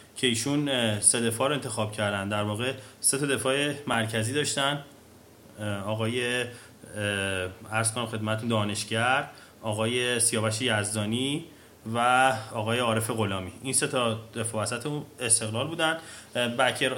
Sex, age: male, 30-49